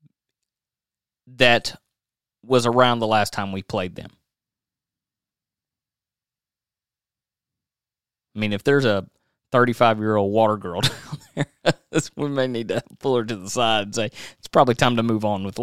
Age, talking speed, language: 30-49, 140 wpm, English